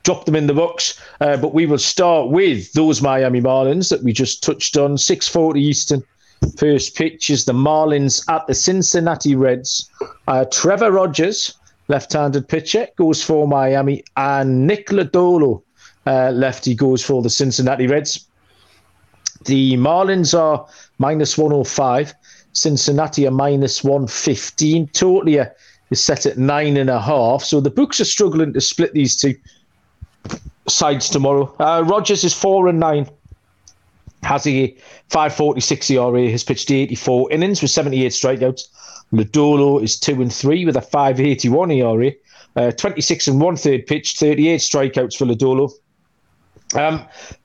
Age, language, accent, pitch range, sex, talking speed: 40-59, English, British, 130-155 Hz, male, 145 wpm